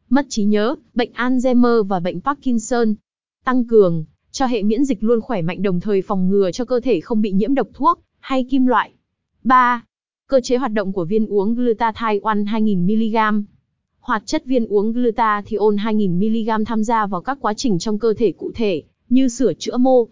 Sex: female